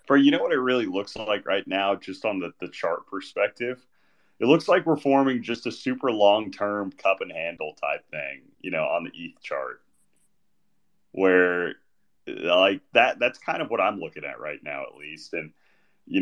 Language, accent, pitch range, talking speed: English, American, 95-130 Hz, 195 wpm